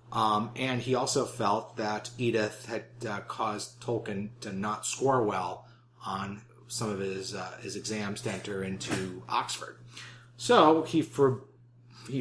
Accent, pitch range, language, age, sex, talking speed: American, 110-130 Hz, English, 30-49, male, 145 wpm